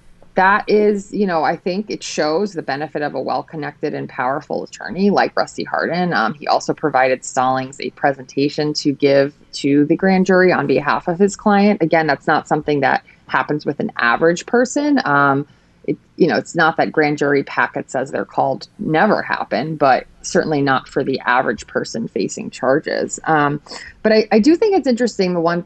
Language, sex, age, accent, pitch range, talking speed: English, female, 30-49, American, 145-185 Hz, 185 wpm